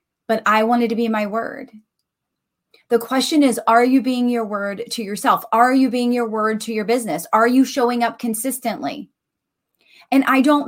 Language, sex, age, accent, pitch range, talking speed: English, female, 30-49, American, 195-245 Hz, 185 wpm